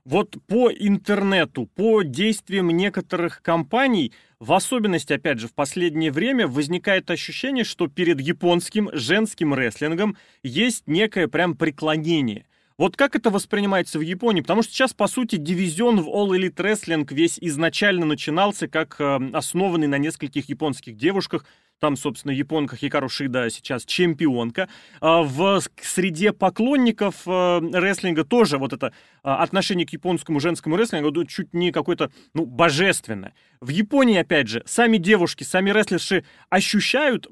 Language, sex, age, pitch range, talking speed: Russian, male, 30-49, 155-200 Hz, 135 wpm